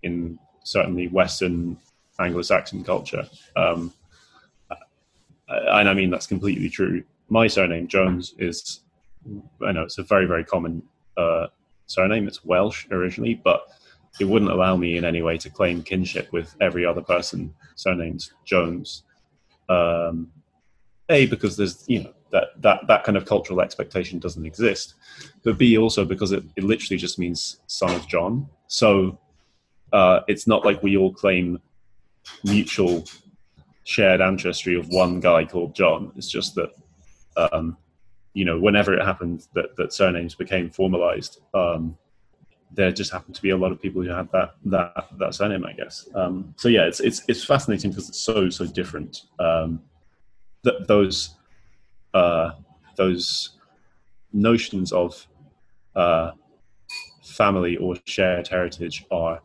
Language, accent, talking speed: English, British, 145 wpm